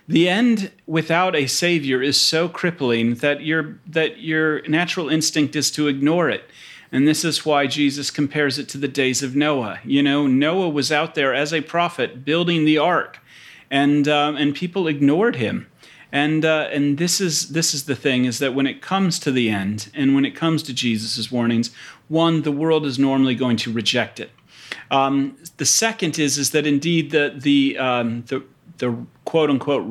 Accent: American